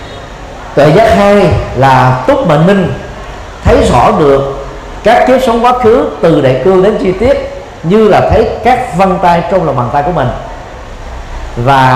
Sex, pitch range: male, 130-190 Hz